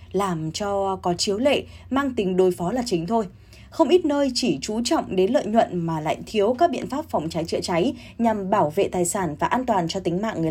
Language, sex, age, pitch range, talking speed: Vietnamese, female, 20-39, 180-260 Hz, 245 wpm